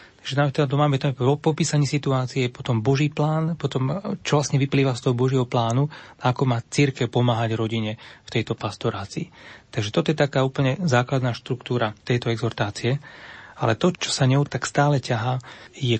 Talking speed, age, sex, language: 160 wpm, 30-49, male, Slovak